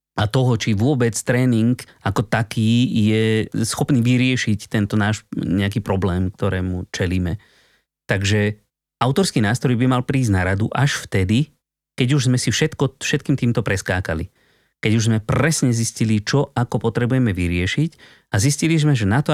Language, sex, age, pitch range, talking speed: Slovak, male, 30-49, 100-130 Hz, 150 wpm